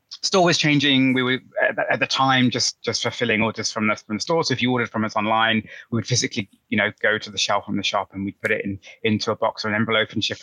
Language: English